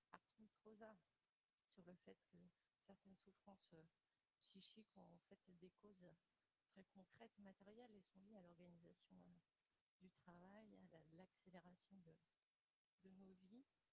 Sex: female